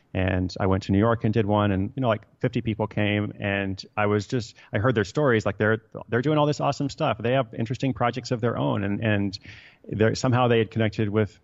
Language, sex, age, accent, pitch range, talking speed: English, male, 30-49, American, 95-115 Hz, 245 wpm